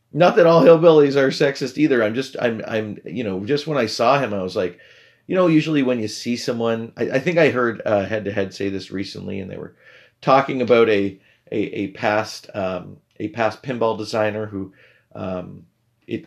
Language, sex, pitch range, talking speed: English, male, 100-135 Hz, 210 wpm